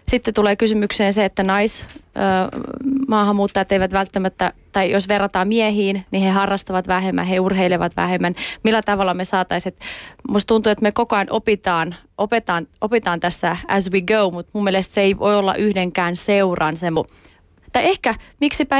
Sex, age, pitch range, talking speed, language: female, 30-49, 175-210 Hz, 155 wpm, Finnish